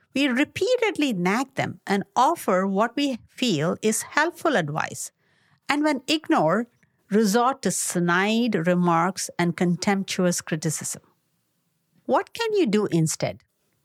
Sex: female